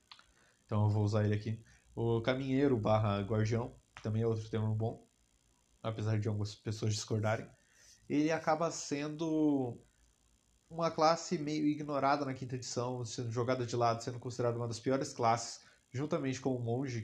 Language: Portuguese